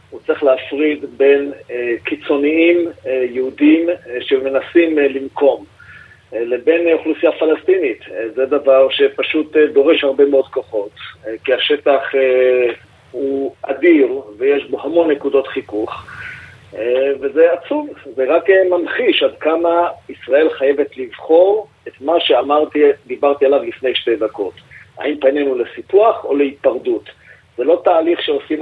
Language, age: Hebrew, 50-69